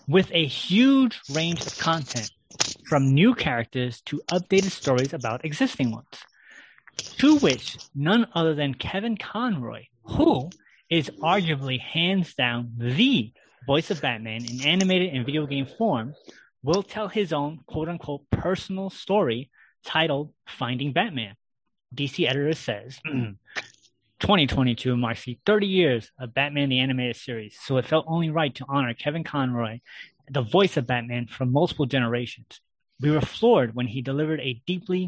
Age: 30-49